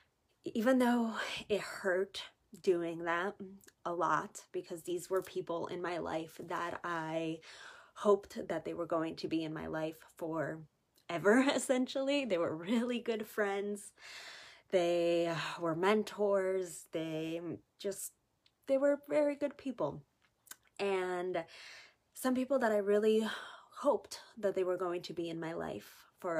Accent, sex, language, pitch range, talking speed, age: American, female, English, 170-215 Hz, 140 wpm, 20-39